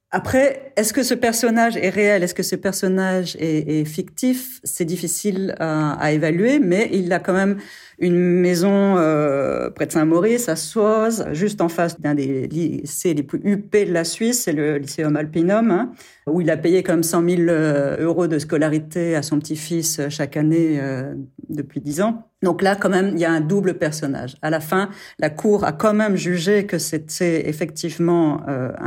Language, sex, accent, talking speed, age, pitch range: French, female, French, 190 wpm, 40-59, 155-205 Hz